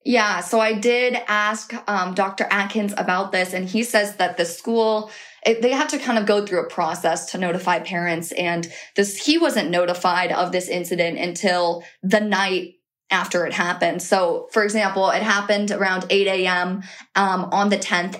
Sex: female